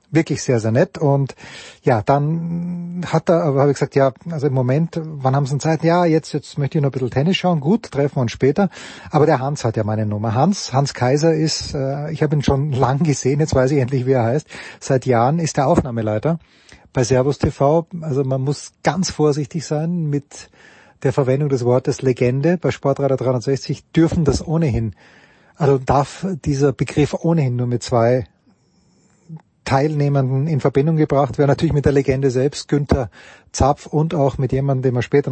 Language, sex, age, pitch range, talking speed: German, male, 30-49, 130-155 Hz, 190 wpm